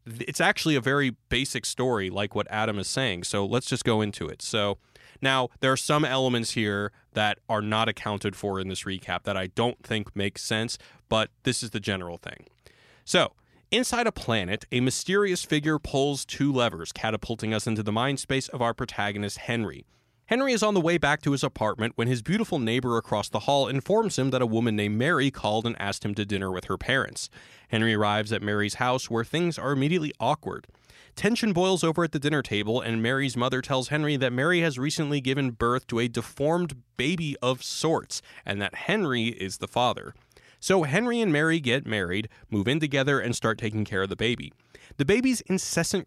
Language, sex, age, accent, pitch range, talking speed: English, male, 30-49, American, 105-140 Hz, 200 wpm